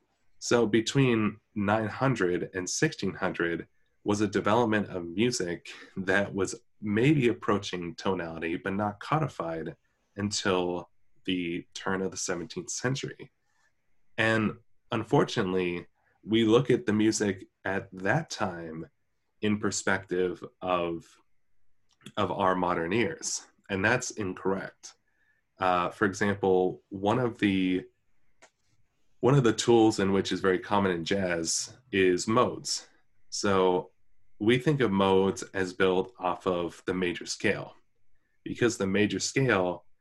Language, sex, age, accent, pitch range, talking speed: English, male, 20-39, American, 90-105 Hz, 120 wpm